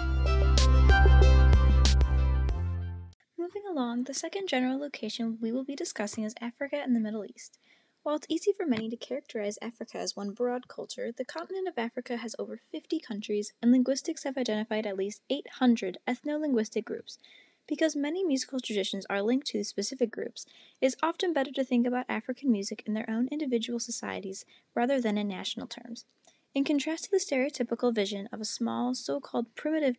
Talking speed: 170 wpm